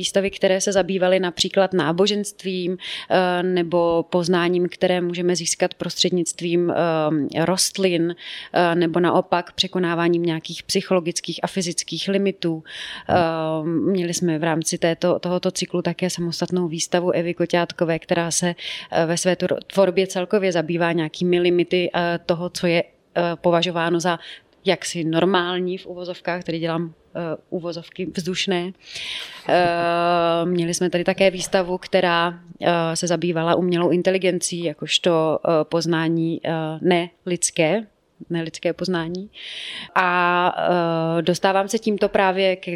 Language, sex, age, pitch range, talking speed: Czech, female, 30-49, 170-185 Hz, 105 wpm